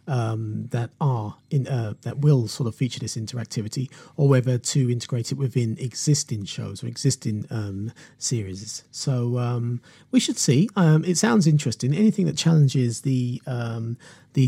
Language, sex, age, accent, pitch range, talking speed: English, male, 40-59, British, 120-145 Hz, 160 wpm